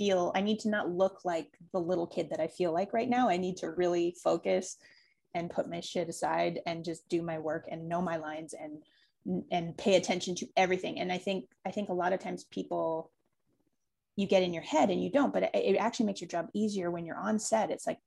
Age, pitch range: 30-49, 180-215 Hz